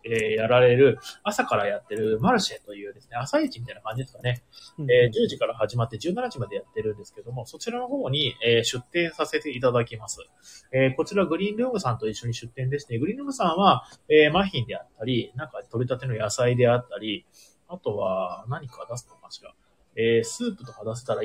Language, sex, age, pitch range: Japanese, male, 30-49, 115-160 Hz